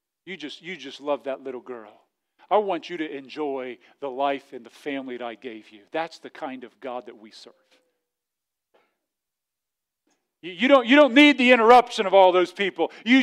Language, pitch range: English, 185-240 Hz